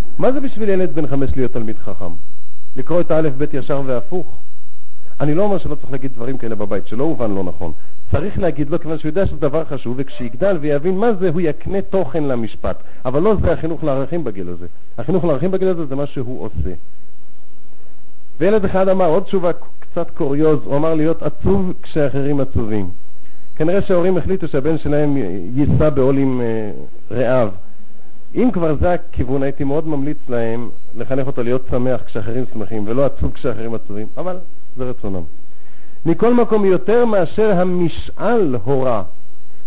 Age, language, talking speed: 50-69, Hebrew, 160 wpm